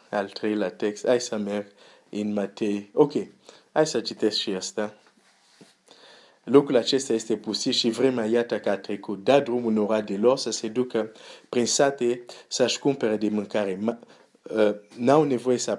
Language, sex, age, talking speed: Romanian, male, 50-69, 150 wpm